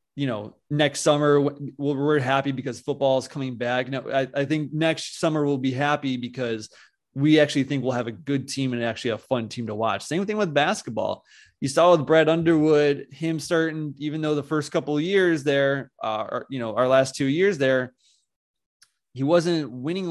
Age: 20-39